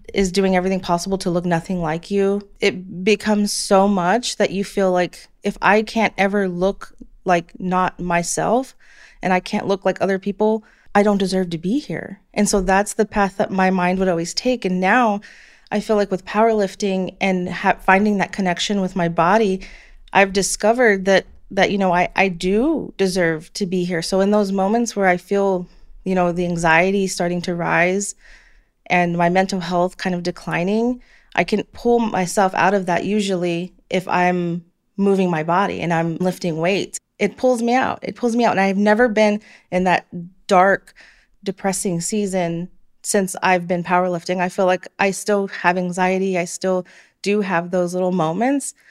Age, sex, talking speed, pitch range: 30-49, female, 185 wpm, 180-205 Hz